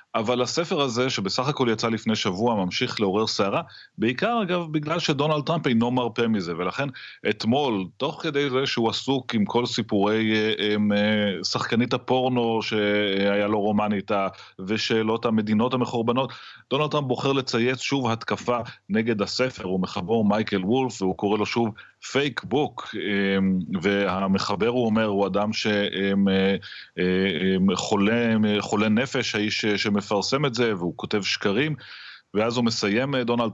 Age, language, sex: 30-49, Hebrew, male